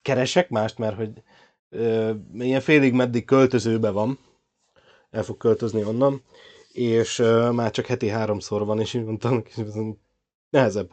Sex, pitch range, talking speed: male, 110-125 Hz, 145 wpm